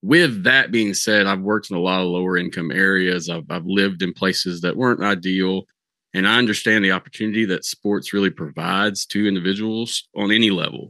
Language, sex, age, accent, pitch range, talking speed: English, male, 30-49, American, 95-110 Hz, 195 wpm